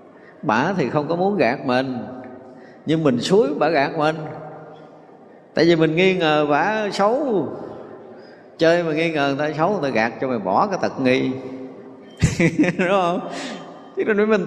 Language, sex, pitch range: Vietnamese, male, 115-155 Hz